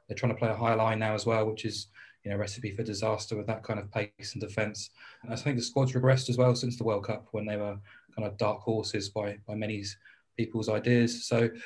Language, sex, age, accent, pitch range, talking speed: English, male, 20-39, British, 110-125 Hz, 255 wpm